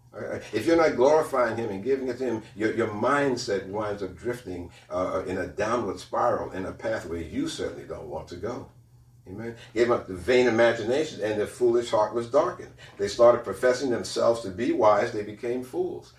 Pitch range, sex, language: 110-130 Hz, male, English